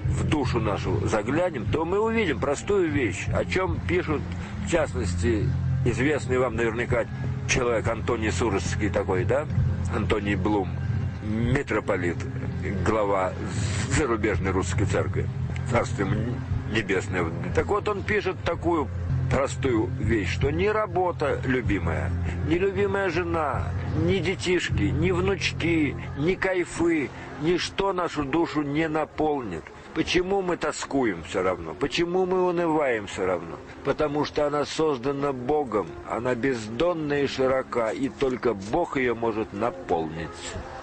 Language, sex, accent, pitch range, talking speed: Russian, male, native, 105-155 Hz, 120 wpm